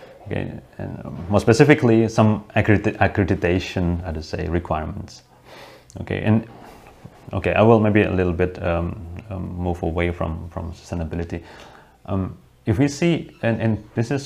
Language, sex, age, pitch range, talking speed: English, male, 30-49, 85-110 Hz, 135 wpm